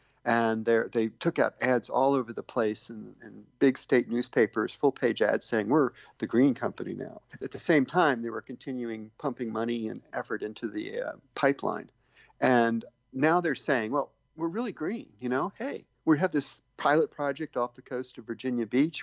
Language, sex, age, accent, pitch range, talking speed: English, male, 50-69, American, 115-140 Hz, 190 wpm